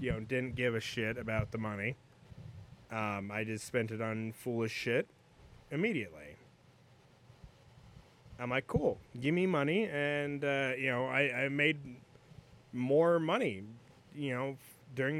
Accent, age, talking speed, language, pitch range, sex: American, 30-49, 140 wpm, English, 120-155 Hz, male